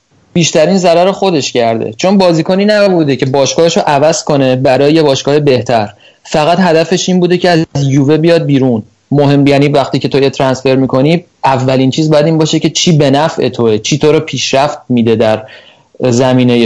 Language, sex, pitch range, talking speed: Persian, male, 135-165 Hz, 175 wpm